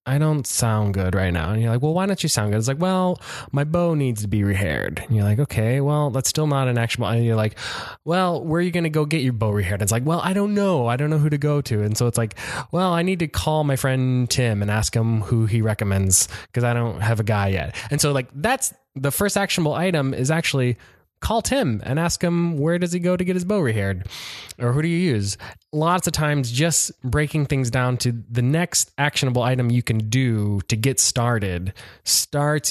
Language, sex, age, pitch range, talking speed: English, male, 20-39, 105-145 Hz, 245 wpm